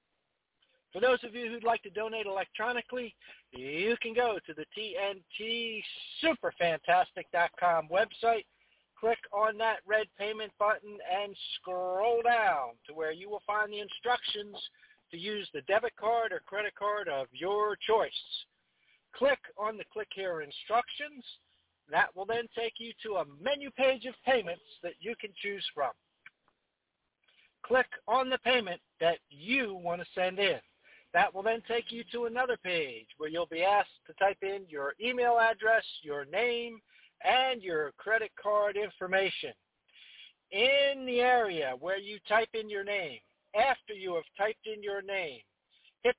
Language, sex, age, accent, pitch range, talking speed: English, male, 60-79, American, 190-235 Hz, 155 wpm